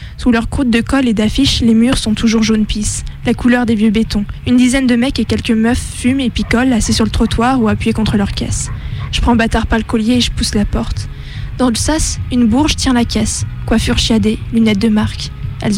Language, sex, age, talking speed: French, female, 20-39, 235 wpm